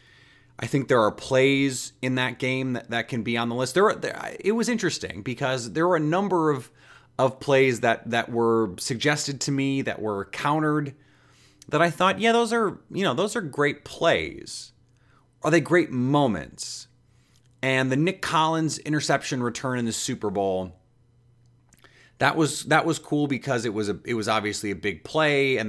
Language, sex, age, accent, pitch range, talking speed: English, male, 30-49, American, 115-145 Hz, 185 wpm